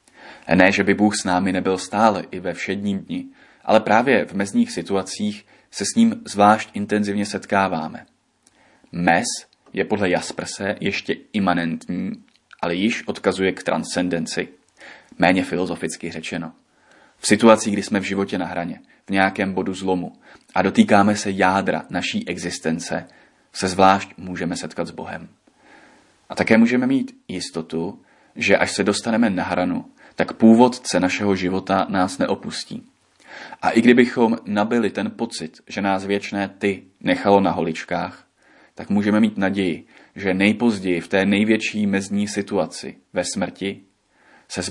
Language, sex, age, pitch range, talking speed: Czech, male, 30-49, 95-110 Hz, 140 wpm